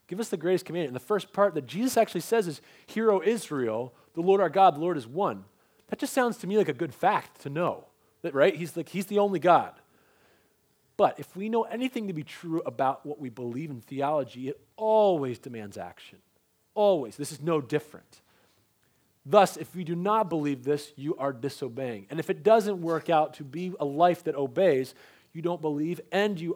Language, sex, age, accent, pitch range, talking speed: English, male, 30-49, American, 130-190 Hz, 210 wpm